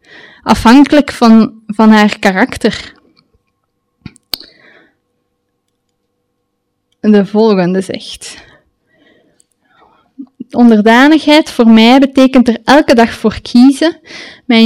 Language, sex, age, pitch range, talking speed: Dutch, female, 20-39, 215-270 Hz, 75 wpm